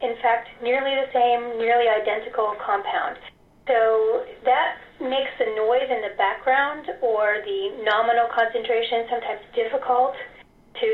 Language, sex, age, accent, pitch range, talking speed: English, female, 30-49, American, 225-295 Hz, 125 wpm